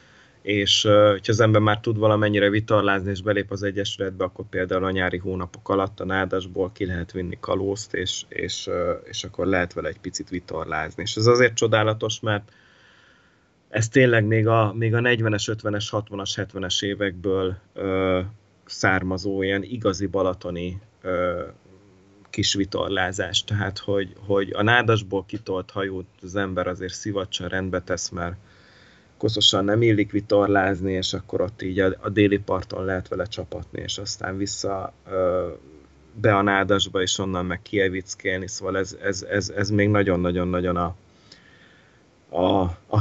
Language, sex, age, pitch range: Hungarian, male, 30-49, 95-105 Hz